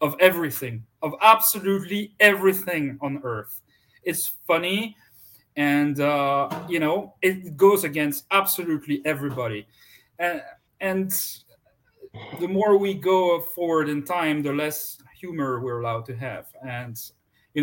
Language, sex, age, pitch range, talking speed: English, male, 40-59, 125-160 Hz, 125 wpm